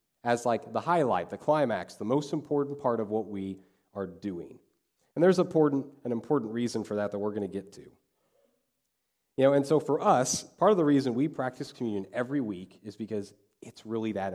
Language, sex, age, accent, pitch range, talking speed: English, male, 30-49, American, 105-145 Hz, 205 wpm